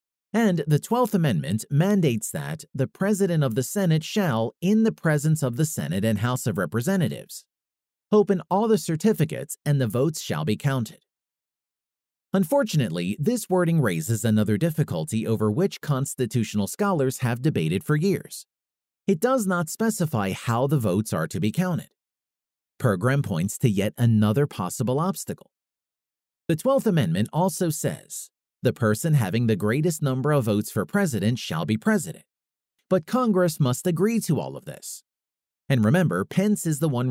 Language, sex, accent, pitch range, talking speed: English, male, American, 110-180 Hz, 155 wpm